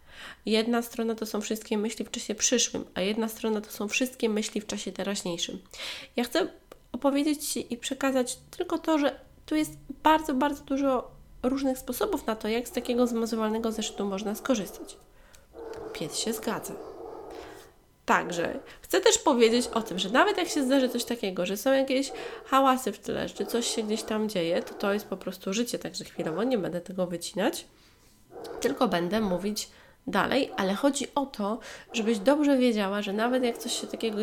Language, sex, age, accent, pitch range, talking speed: Polish, female, 20-39, native, 205-265 Hz, 175 wpm